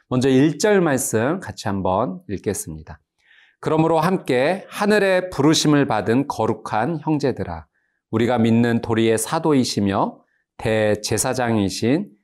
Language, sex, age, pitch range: Korean, male, 40-59, 105-140 Hz